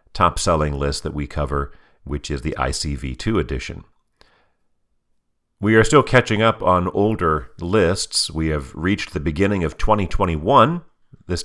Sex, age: male, 40-59